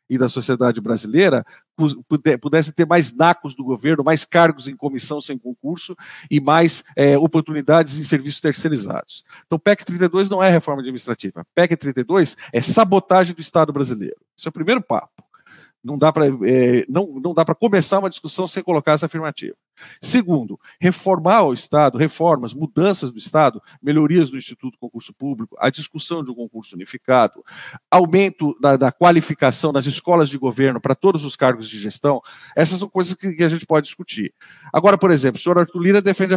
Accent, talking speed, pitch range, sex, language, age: Brazilian, 170 wpm, 135-185 Hz, male, Portuguese, 50-69